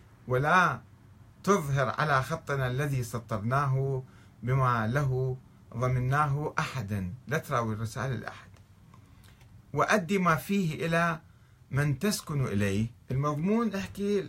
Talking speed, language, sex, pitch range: 95 wpm, Arabic, male, 105-150 Hz